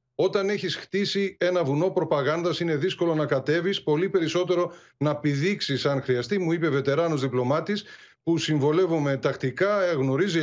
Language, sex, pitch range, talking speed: Greek, male, 145-195 Hz, 140 wpm